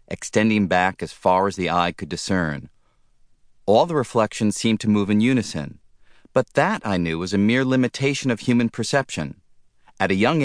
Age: 40-59